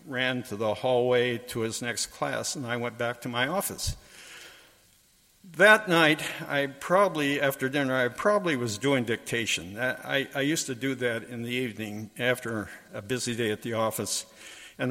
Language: English